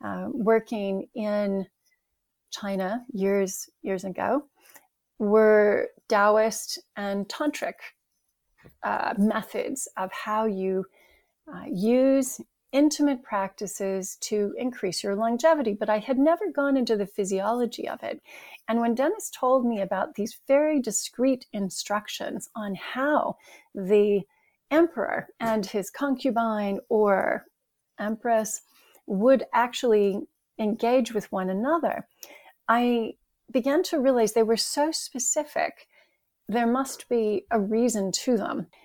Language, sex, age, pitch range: English, female, 30-49, 205-270 Hz